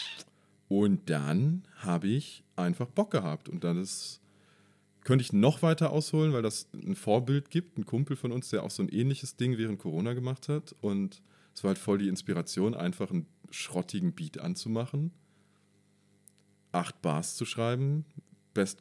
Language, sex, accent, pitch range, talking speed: German, male, German, 105-150 Hz, 160 wpm